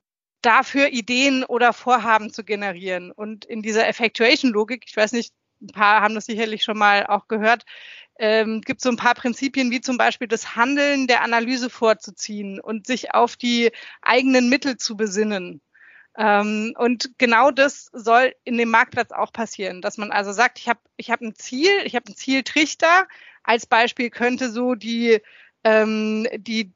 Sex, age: female, 30-49